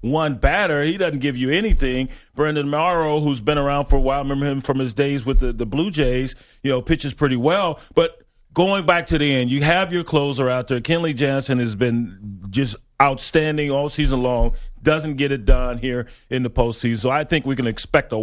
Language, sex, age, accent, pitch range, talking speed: English, male, 40-59, American, 120-145 Hz, 215 wpm